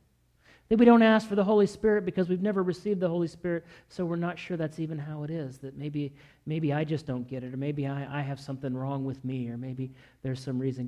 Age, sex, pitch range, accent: 40-59, male, 145-225 Hz, American